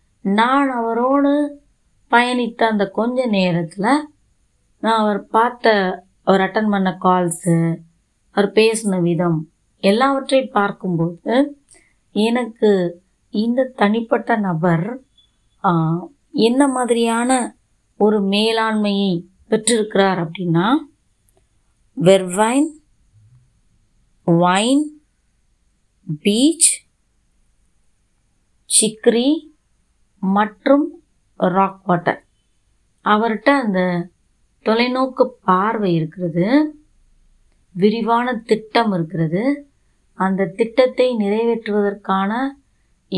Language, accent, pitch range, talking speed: Tamil, native, 185-235 Hz, 65 wpm